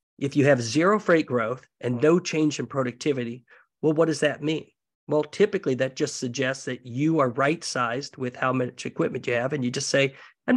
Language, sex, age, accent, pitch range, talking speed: English, male, 50-69, American, 125-150 Hz, 205 wpm